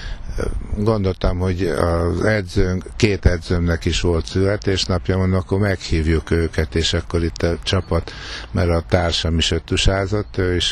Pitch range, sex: 85-95 Hz, male